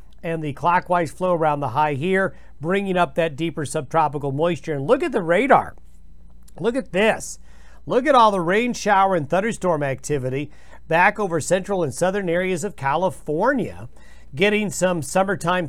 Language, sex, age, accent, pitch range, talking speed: English, male, 50-69, American, 145-185 Hz, 160 wpm